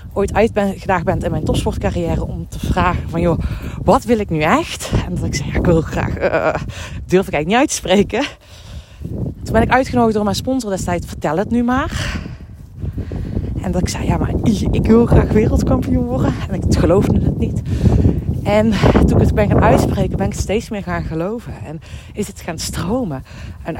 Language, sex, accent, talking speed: Dutch, female, Dutch, 200 wpm